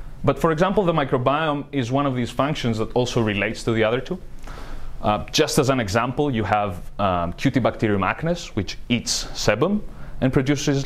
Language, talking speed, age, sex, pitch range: English, 175 wpm, 30-49, male, 105-135 Hz